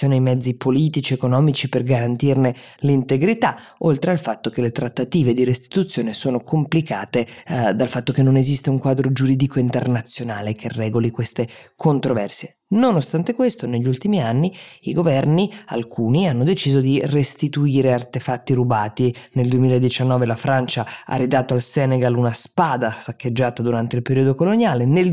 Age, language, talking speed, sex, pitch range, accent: 20-39, Italian, 150 wpm, female, 125-155 Hz, native